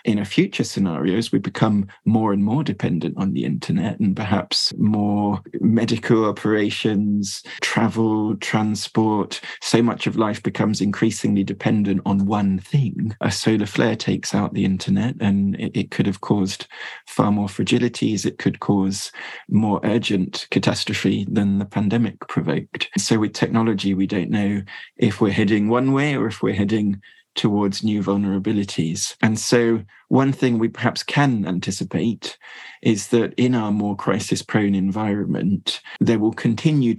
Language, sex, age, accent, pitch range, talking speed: English, male, 20-39, British, 100-115 Hz, 150 wpm